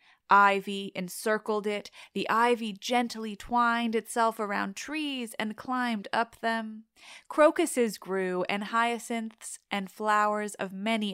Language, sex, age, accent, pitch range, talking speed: English, female, 20-39, American, 195-240 Hz, 120 wpm